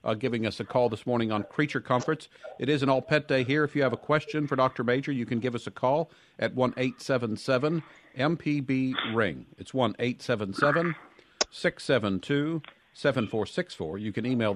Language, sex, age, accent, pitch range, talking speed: English, male, 50-69, American, 115-150 Hz, 160 wpm